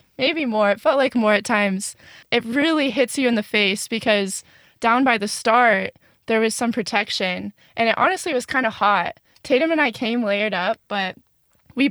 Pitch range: 200-245 Hz